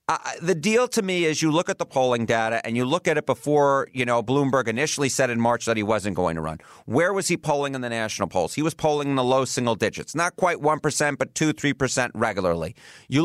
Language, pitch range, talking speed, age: English, 125-165 Hz, 260 wpm, 40-59